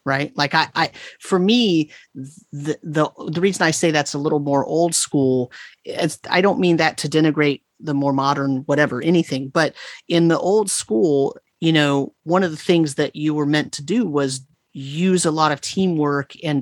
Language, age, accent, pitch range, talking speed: English, 30-49, American, 140-165 Hz, 195 wpm